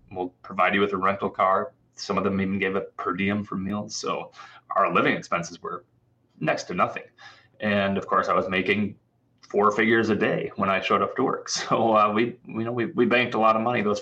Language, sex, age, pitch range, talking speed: English, male, 30-49, 100-130 Hz, 230 wpm